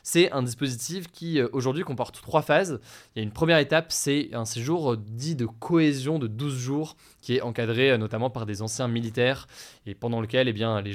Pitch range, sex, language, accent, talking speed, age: 115-155 Hz, male, French, French, 205 wpm, 20-39